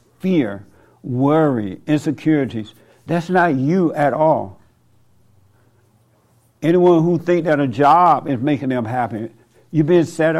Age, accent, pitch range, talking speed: 60-79, American, 120-155 Hz, 120 wpm